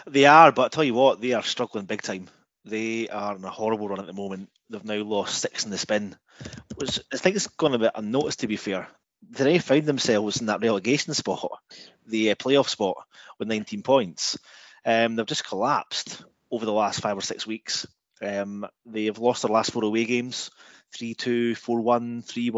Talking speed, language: 195 wpm, English